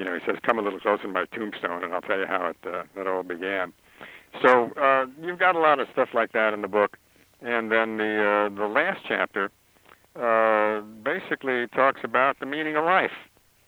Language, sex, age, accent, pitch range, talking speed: English, male, 60-79, American, 100-125 Hz, 215 wpm